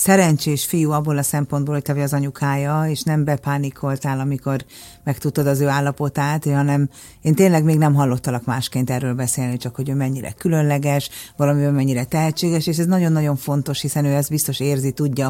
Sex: female